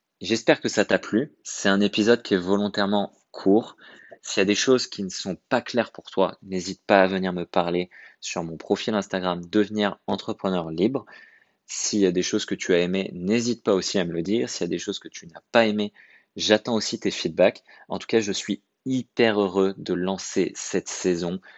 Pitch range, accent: 90-105 Hz, French